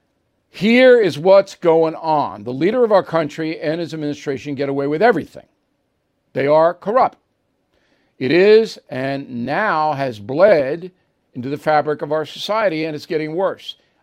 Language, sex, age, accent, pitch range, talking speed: English, male, 50-69, American, 145-190 Hz, 155 wpm